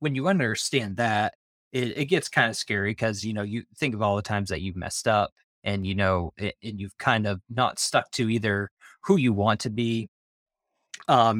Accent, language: American, English